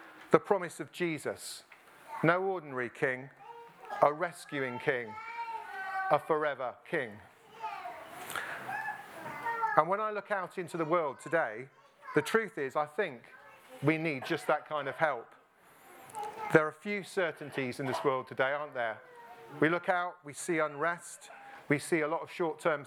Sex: male